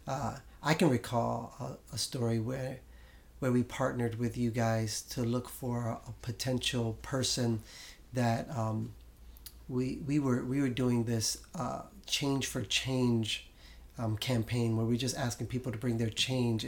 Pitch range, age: 115-125 Hz, 30-49